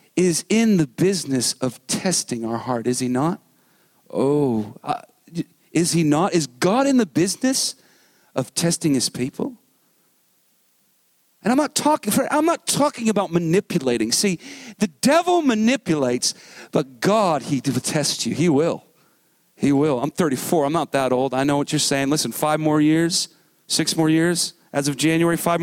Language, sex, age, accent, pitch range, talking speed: English, male, 40-59, American, 145-205 Hz, 165 wpm